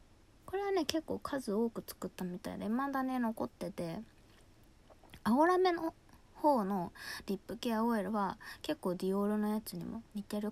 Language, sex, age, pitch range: Japanese, female, 20-39, 190-250 Hz